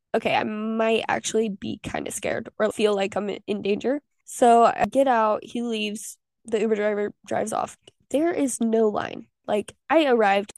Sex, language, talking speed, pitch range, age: female, English, 180 wpm, 210-250 Hz, 10-29